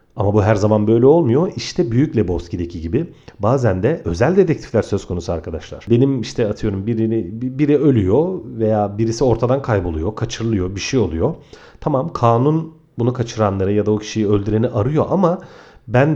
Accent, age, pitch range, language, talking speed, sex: native, 40-59, 100-135 Hz, Turkish, 160 wpm, male